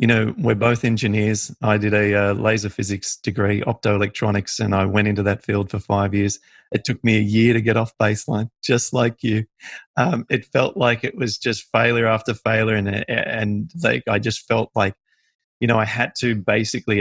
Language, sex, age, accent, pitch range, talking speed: English, male, 30-49, Australian, 105-125 Hz, 200 wpm